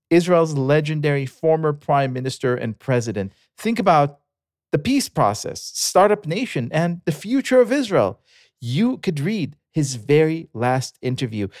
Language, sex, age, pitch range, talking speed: English, male, 40-59, 105-145 Hz, 135 wpm